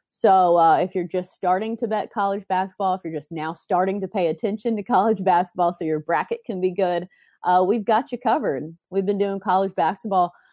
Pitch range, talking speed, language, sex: 175-215 Hz, 210 wpm, English, female